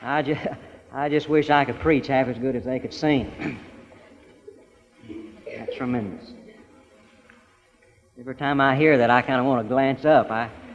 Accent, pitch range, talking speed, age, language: American, 140-195 Hz, 165 wpm, 50-69, English